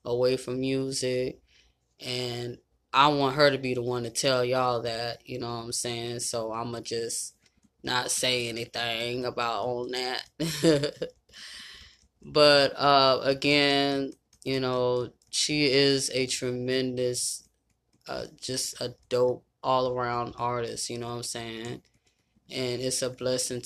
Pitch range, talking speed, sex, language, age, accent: 120-135 Hz, 135 wpm, female, English, 20-39, American